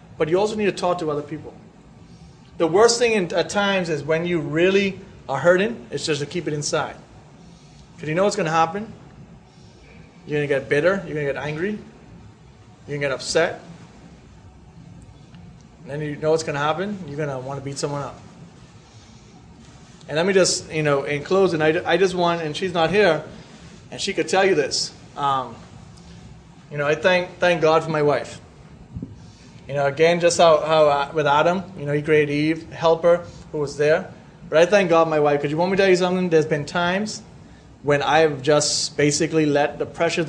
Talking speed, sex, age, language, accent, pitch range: 205 wpm, male, 30-49, English, American, 145-175 Hz